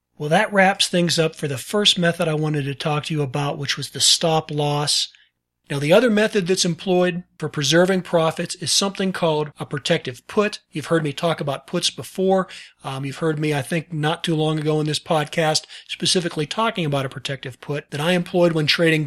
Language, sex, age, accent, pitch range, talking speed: English, male, 40-59, American, 145-180 Hz, 210 wpm